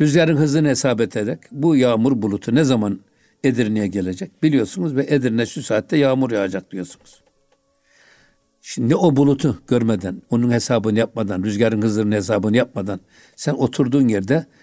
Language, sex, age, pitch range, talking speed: Turkish, male, 60-79, 105-140 Hz, 135 wpm